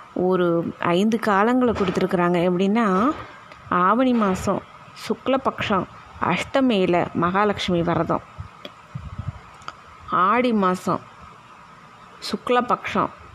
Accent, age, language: native, 20-39, Tamil